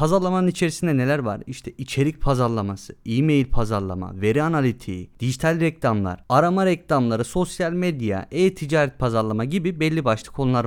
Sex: male